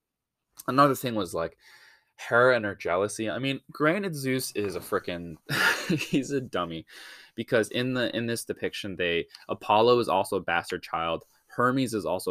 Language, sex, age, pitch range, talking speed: English, male, 10-29, 90-115 Hz, 165 wpm